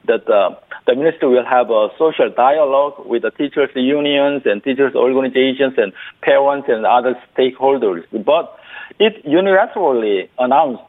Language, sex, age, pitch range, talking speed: English, male, 50-69, 125-170 Hz, 140 wpm